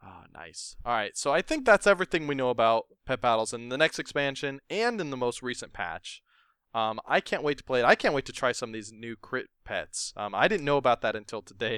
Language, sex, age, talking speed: English, male, 20-39, 255 wpm